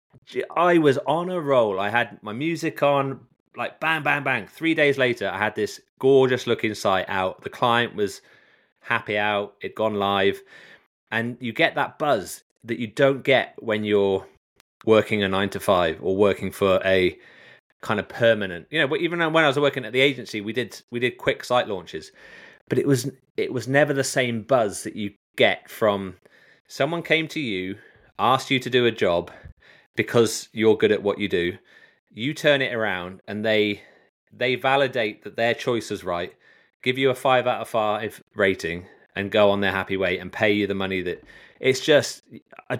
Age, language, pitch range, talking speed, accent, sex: 30-49, English, 100-135 Hz, 195 wpm, British, male